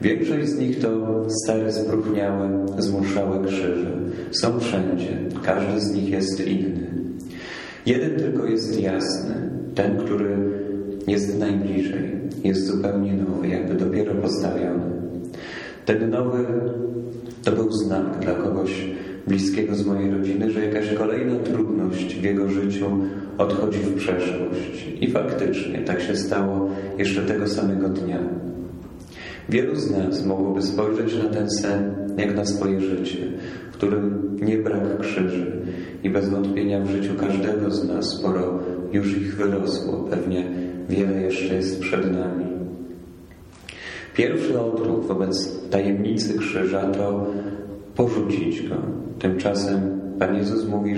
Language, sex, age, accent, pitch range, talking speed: Polish, male, 40-59, native, 95-105 Hz, 125 wpm